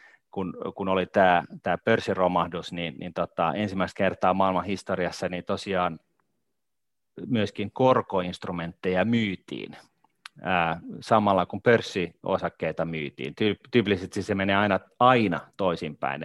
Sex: male